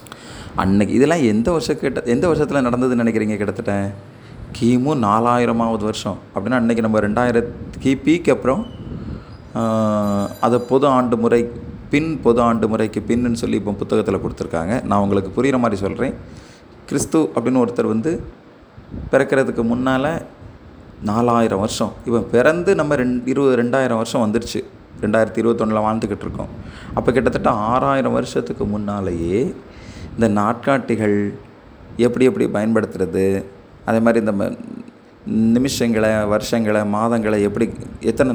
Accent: native